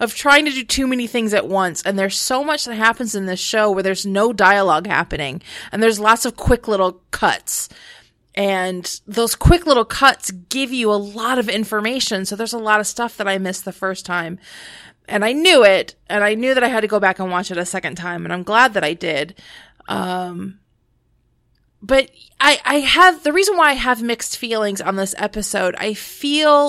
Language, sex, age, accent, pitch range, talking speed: English, female, 30-49, American, 190-245 Hz, 215 wpm